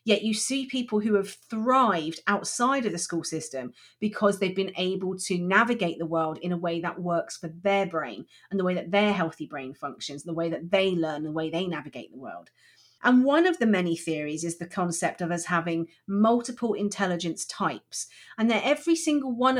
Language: English